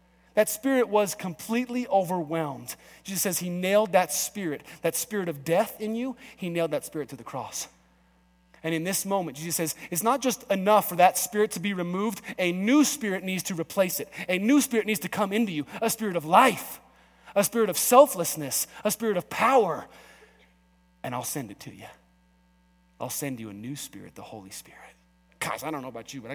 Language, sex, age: English, male, 30-49